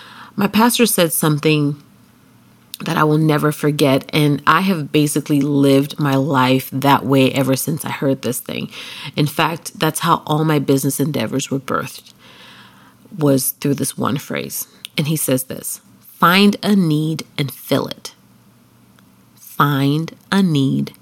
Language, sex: English, female